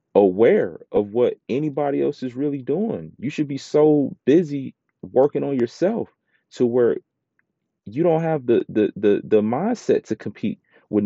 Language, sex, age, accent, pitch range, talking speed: English, male, 30-49, American, 105-140 Hz, 155 wpm